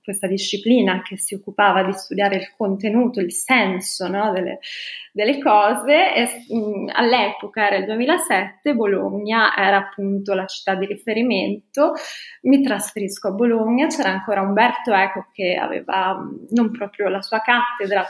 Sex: female